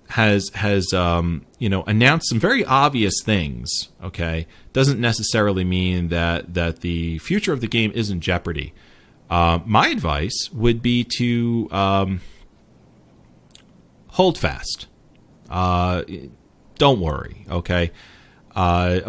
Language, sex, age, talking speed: English, male, 30-49, 120 wpm